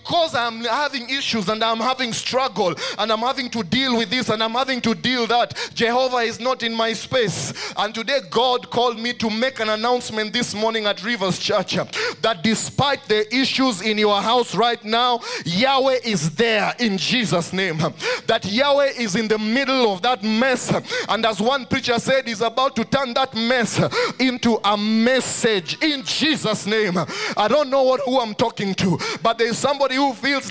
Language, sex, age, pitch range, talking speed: English, male, 30-49, 215-265 Hz, 185 wpm